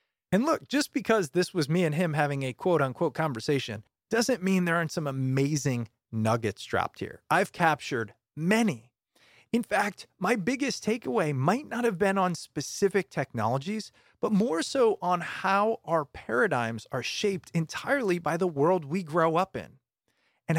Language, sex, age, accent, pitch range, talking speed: English, male, 30-49, American, 135-195 Hz, 165 wpm